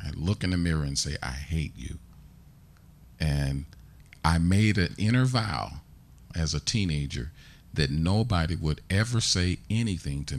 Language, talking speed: English, 150 wpm